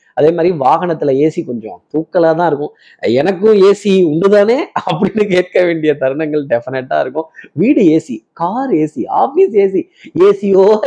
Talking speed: 125 wpm